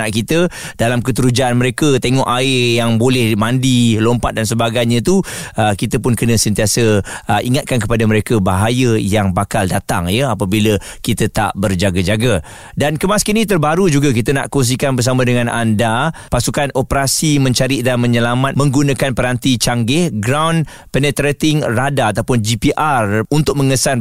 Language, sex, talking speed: Malay, male, 135 wpm